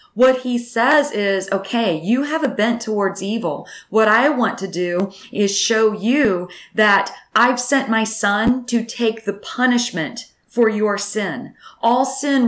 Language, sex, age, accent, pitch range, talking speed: English, female, 30-49, American, 190-235 Hz, 160 wpm